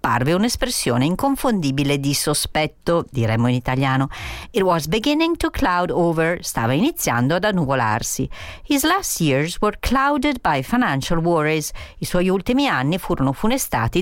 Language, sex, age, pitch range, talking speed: Italian, female, 50-69, 140-200 Hz, 135 wpm